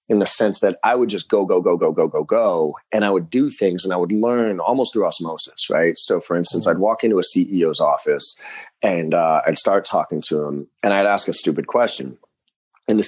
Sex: male